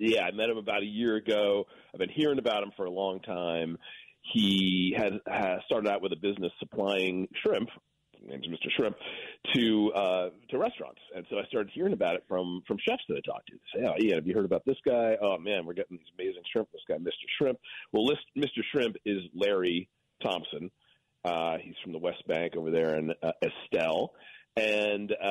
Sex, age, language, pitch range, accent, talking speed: male, 40-59, English, 85-115 Hz, American, 210 wpm